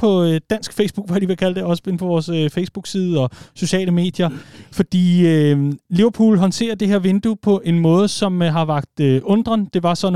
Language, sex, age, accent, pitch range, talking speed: Danish, male, 30-49, native, 145-185 Hz, 215 wpm